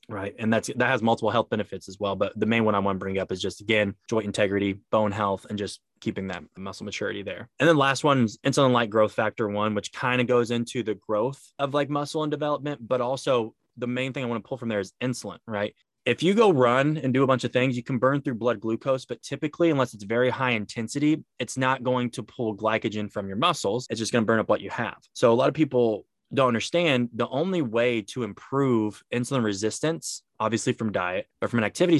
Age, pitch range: 20-39, 105-130 Hz